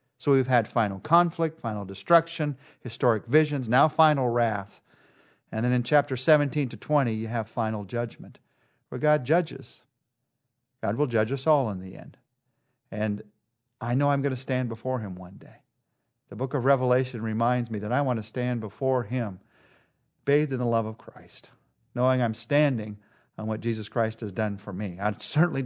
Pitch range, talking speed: 115-140 Hz, 180 wpm